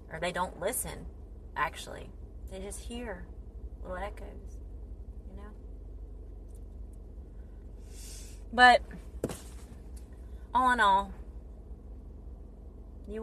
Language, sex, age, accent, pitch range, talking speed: English, female, 30-49, American, 70-85 Hz, 75 wpm